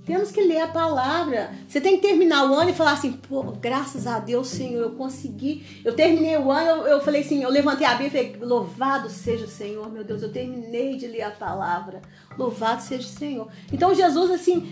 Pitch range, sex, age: 215-300 Hz, female, 40-59